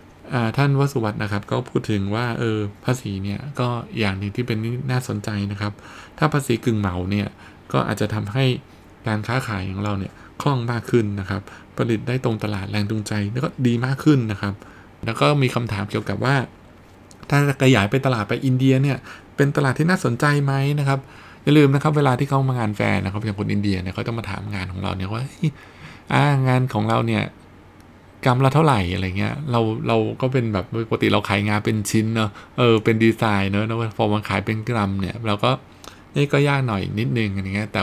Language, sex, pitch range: Thai, male, 100-125 Hz